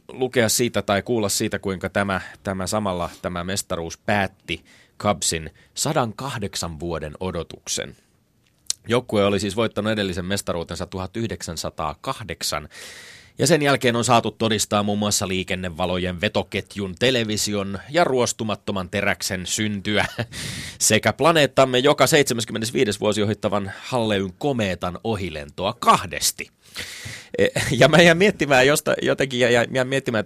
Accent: native